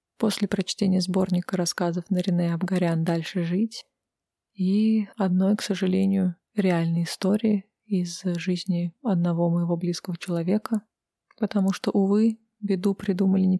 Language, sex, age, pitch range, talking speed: Russian, female, 20-39, 185-205 Hz, 120 wpm